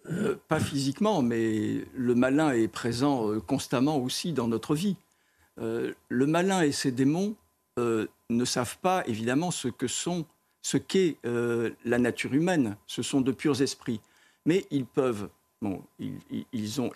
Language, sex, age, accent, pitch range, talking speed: French, male, 50-69, French, 115-145 Hz, 165 wpm